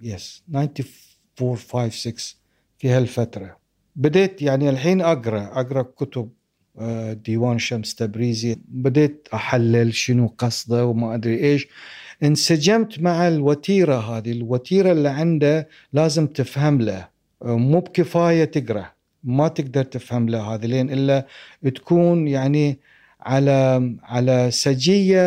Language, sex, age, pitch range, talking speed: Arabic, male, 50-69, 120-165 Hz, 110 wpm